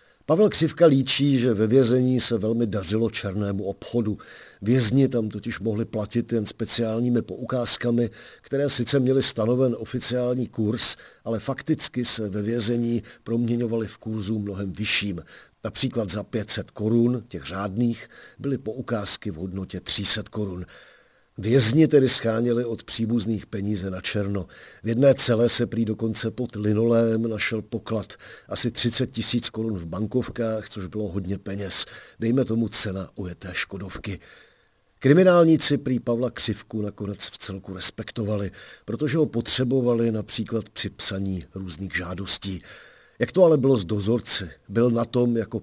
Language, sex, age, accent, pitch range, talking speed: Czech, male, 50-69, native, 100-120 Hz, 140 wpm